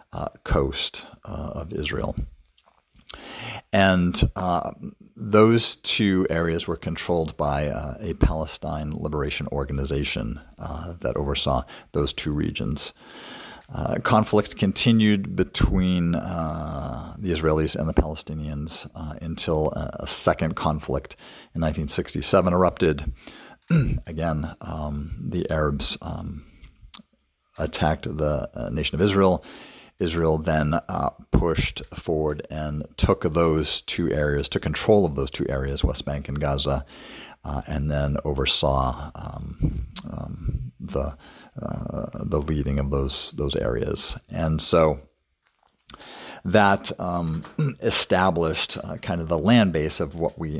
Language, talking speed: English, 120 wpm